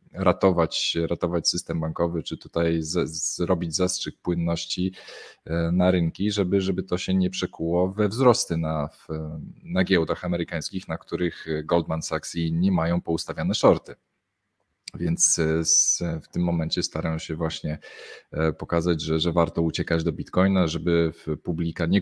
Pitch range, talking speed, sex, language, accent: 80-95 Hz, 135 wpm, male, Polish, native